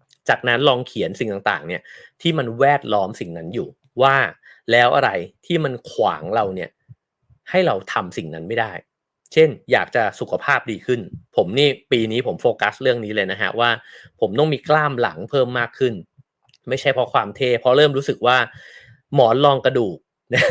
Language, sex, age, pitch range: English, male, 30-49, 120-145 Hz